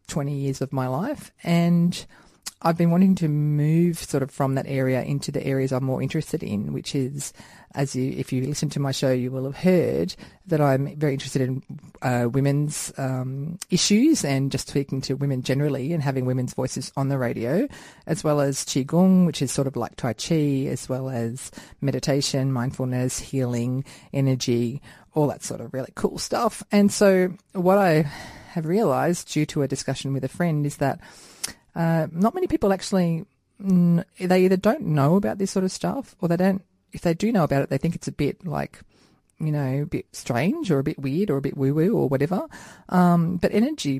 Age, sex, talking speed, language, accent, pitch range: 40-59, female, 200 wpm, English, Australian, 130-170 Hz